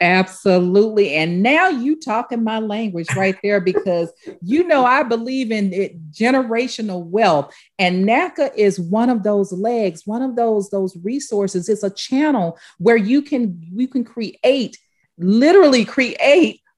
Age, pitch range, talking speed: 40-59, 170-240 Hz, 145 wpm